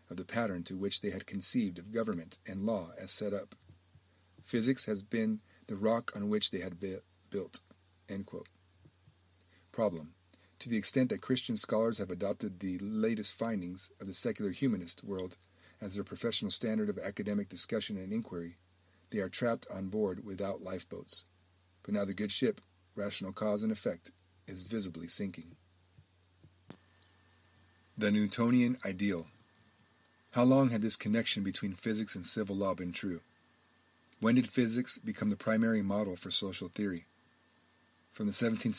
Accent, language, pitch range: American, English, 90-110 Hz